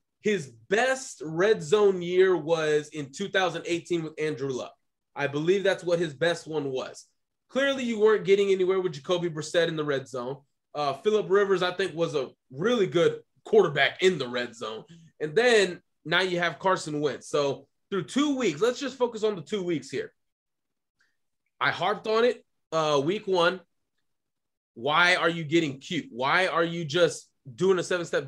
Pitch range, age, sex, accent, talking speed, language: 170-220 Hz, 20-39, male, American, 175 wpm, English